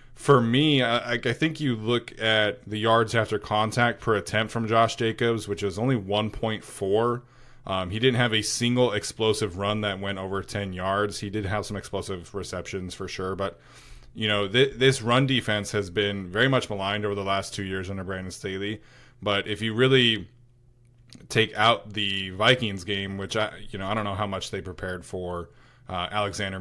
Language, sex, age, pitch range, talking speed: English, male, 20-39, 100-120 Hz, 190 wpm